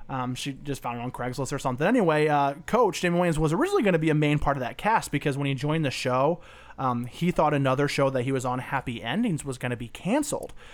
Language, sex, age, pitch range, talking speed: English, male, 30-49, 130-165 Hz, 265 wpm